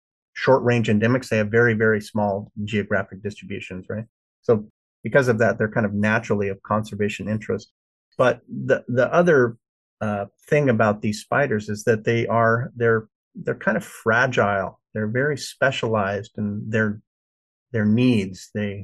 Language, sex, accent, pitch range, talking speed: English, male, American, 105-120 Hz, 150 wpm